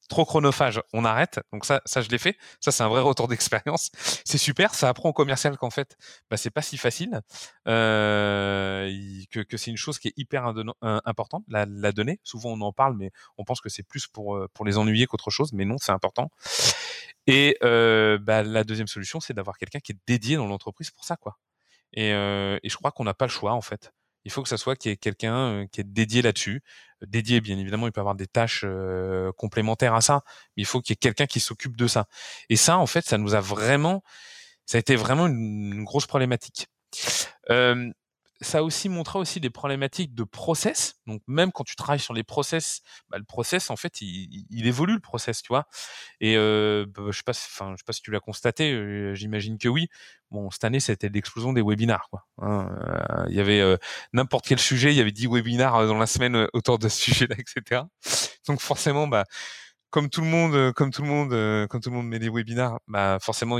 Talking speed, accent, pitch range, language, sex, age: 225 wpm, French, 105-135 Hz, French, male, 20-39